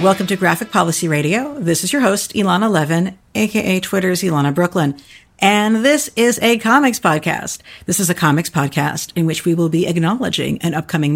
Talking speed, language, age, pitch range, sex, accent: 185 wpm, English, 50-69, 155-205 Hz, female, American